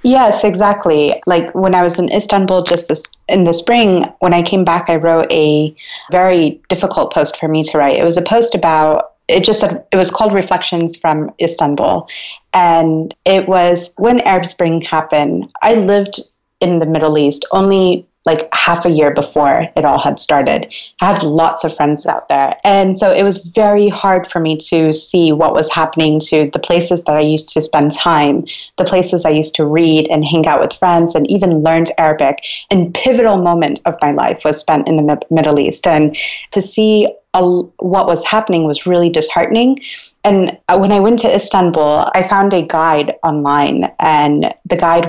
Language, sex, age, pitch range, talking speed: English, female, 30-49, 155-190 Hz, 190 wpm